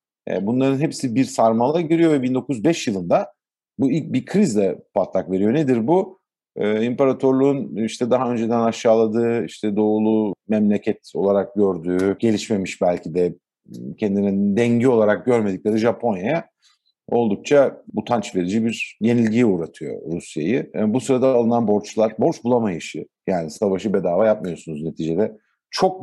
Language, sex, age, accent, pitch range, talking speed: Turkish, male, 50-69, native, 105-130 Hz, 120 wpm